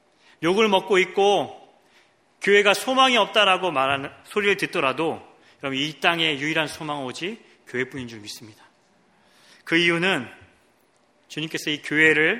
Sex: male